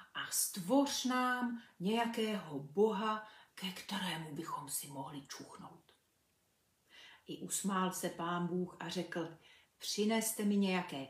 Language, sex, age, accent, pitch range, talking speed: Czech, female, 40-59, native, 175-235 Hz, 115 wpm